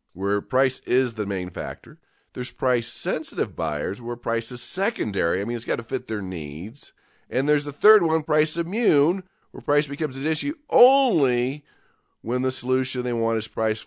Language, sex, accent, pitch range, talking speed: English, male, American, 115-150 Hz, 175 wpm